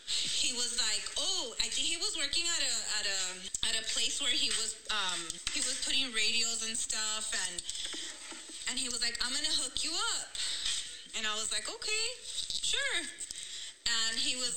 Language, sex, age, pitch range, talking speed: English, female, 20-39, 230-295 Hz, 185 wpm